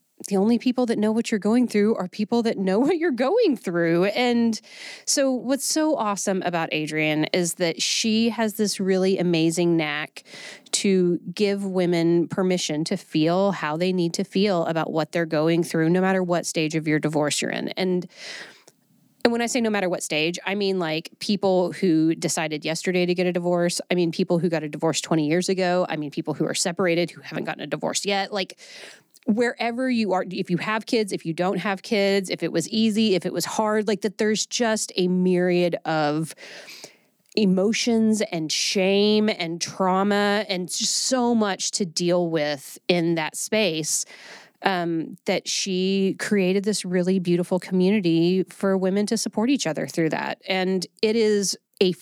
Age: 30-49